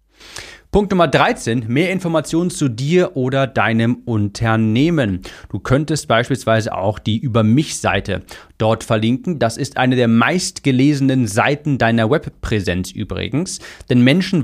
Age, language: 40-59, German